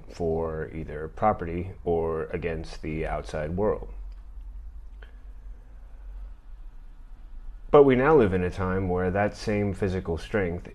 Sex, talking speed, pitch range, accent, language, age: male, 110 wpm, 80-95 Hz, American, English, 30-49